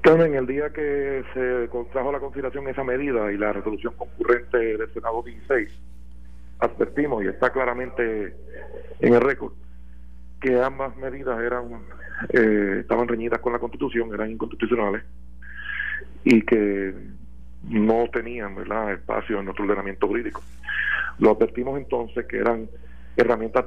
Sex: male